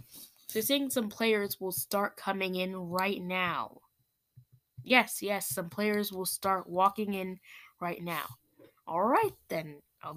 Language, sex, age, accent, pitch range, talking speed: English, female, 10-29, American, 160-230 Hz, 135 wpm